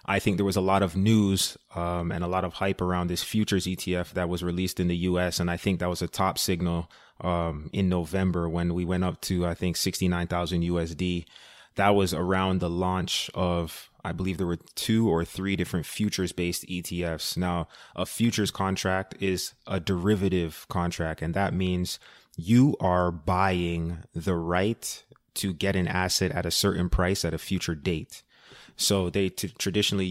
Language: English